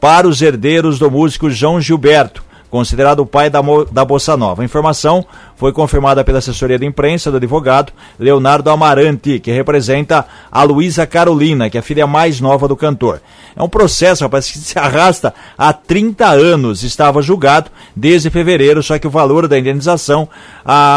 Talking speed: 170 wpm